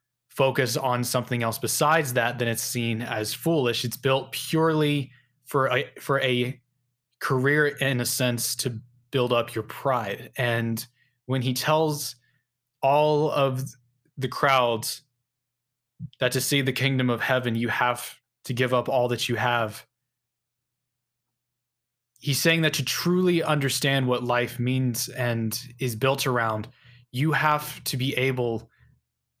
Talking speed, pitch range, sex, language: 140 wpm, 120-135 Hz, male, English